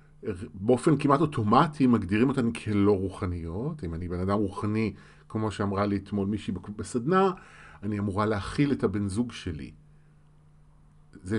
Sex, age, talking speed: male, 40-59, 135 wpm